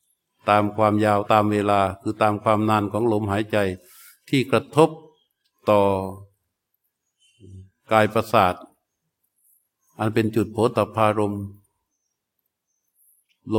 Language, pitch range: Thai, 105-130 Hz